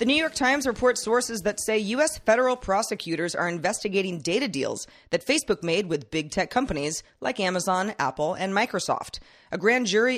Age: 30-49